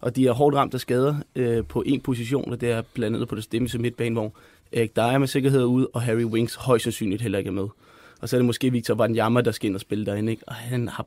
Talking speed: 270 wpm